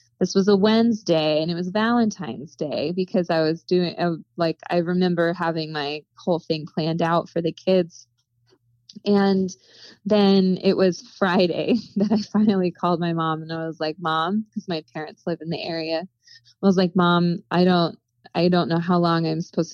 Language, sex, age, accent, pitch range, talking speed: English, female, 20-39, American, 165-190 Hz, 190 wpm